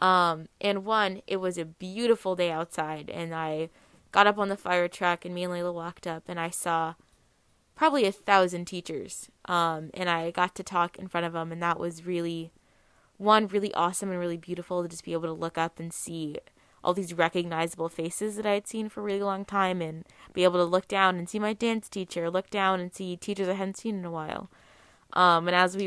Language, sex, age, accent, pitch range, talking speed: English, female, 20-39, American, 170-195 Hz, 225 wpm